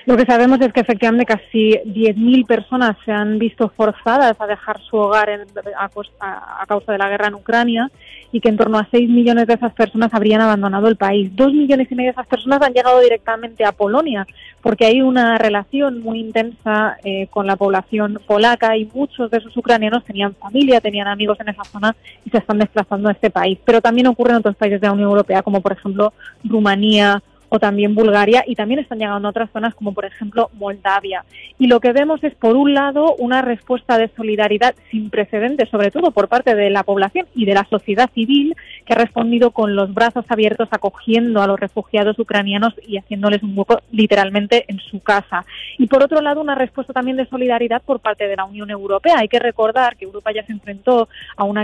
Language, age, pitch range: Spanish, 20-39, 210-240 Hz